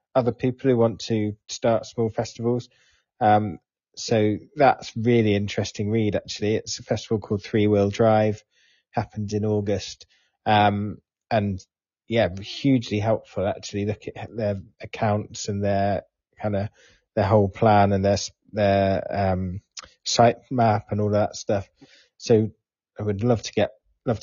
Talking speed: 145 wpm